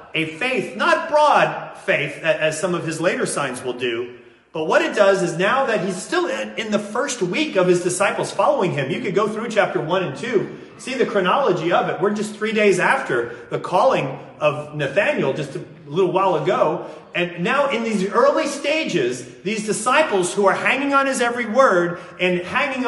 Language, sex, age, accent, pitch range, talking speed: English, male, 30-49, American, 175-220 Hz, 195 wpm